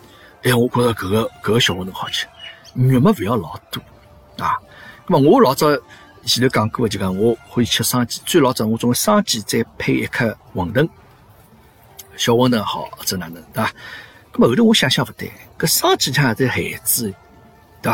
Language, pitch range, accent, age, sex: Chinese, 105-130 Hz, native, 50-69, male